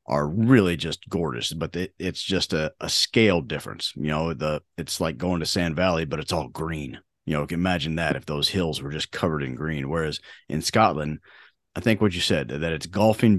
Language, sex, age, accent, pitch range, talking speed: English, male, 30-49, American, 80-95 Hz, 225 wpm